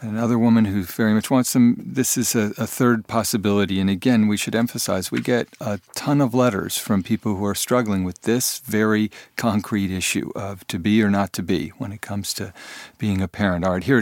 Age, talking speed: 50-69, 220 wpm